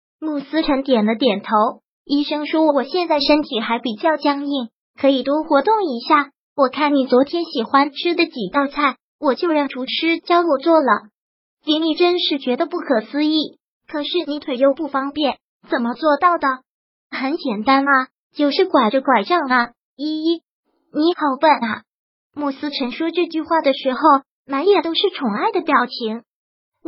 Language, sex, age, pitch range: Chinese, male, 20-39, 260-320 Hz